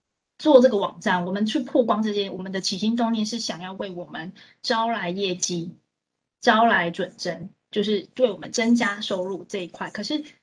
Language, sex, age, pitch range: Chinese, female, 20-39, 185-240 Hz